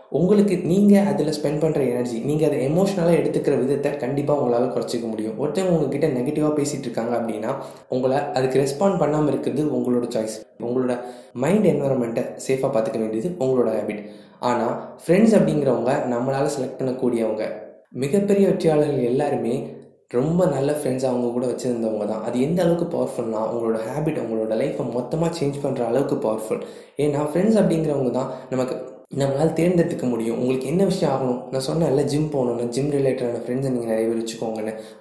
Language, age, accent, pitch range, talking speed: Tamil, 20-39, native, 120-150 Hz, 145 wpm